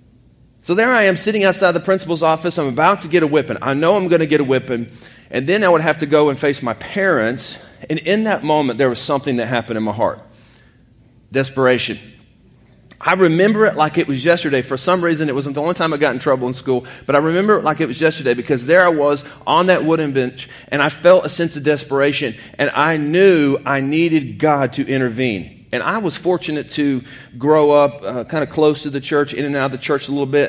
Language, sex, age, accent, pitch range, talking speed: English, male, 40-59, American, 125-160 Hz, 240 wpm